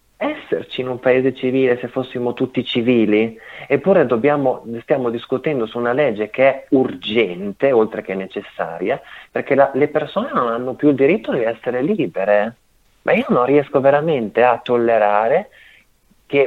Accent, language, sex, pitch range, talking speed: native, Italian, male, 105-140 Hz, 155 wpm